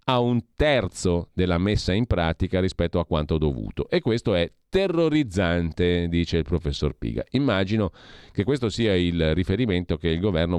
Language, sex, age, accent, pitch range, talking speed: Italian, male, 40-59, native, 85-110 Hz, 160 wpm